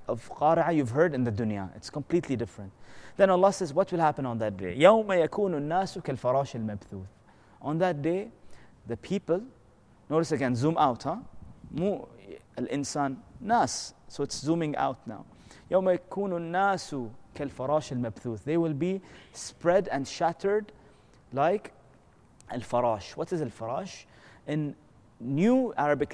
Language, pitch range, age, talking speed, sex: English, 120-170 Hz, 30-49, 120 wpm, male